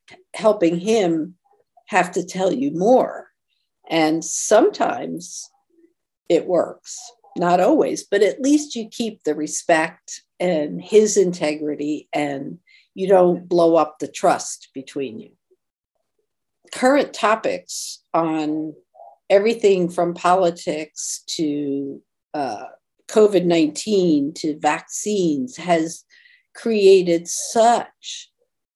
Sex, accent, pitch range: female, American, 170-235 Hz